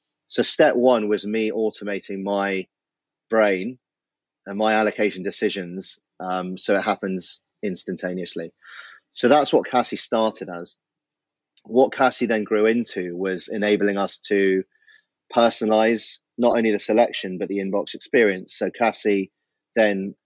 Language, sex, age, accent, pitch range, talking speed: English, male, 30-49, British, 100-115 Hz, 130 wpm